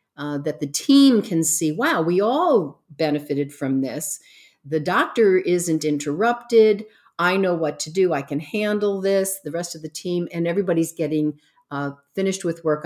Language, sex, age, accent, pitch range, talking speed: English, female, 50-69, American, 150-180 Hz, 175 wpm